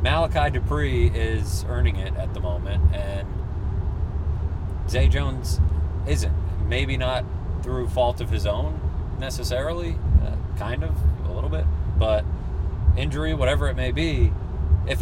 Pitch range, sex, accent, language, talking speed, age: 80-90 Hz, male, American, English, 130 wpm, 30-49